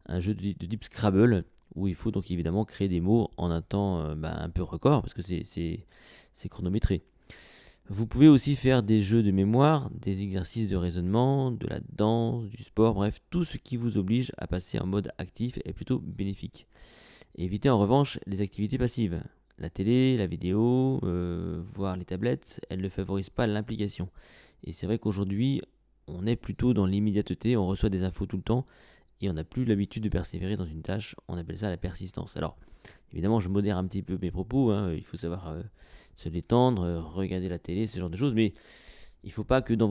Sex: male